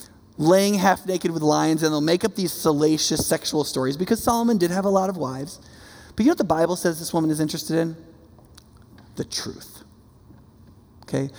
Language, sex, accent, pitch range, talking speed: English, male, American, 145-195 Hz, 190 wpm